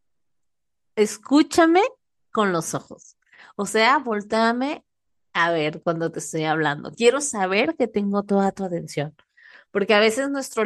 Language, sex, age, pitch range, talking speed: Spanish, female, 30-49, 200-265 Hz, 135 wpm